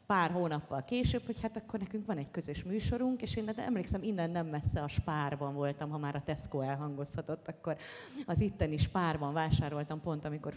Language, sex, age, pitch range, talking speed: Hungarian, female, 30-49, 150-210 Hz, 195 wpm